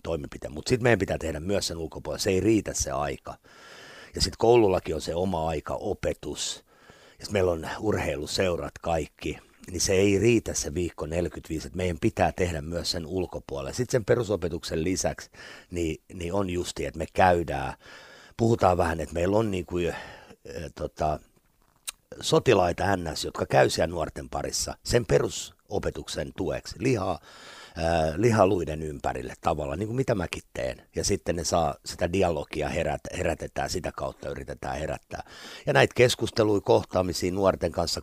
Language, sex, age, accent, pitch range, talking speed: Finnish, male, 50-69, native, 75-95 Hz, 150 wpm